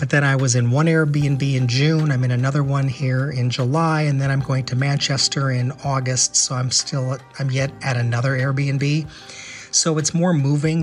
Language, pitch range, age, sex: English, 125-150 Hz, 40-59, male